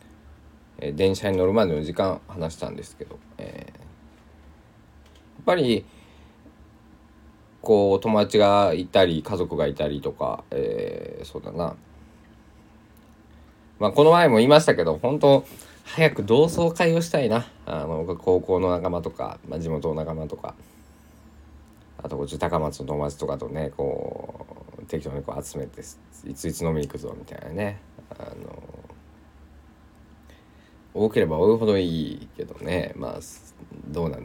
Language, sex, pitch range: Japanese, male, 80-110 Hz